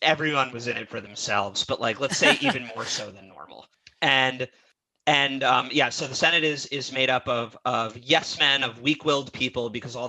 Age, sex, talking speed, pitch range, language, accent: 30-49, male, 210 wpm, 115-140 Hz, English, American